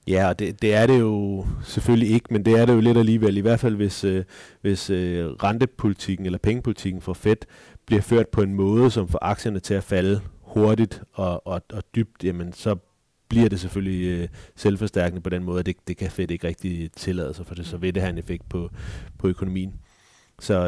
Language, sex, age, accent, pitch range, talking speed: Danish, male, 30-49, native, 90-110 Hz, 210 wpm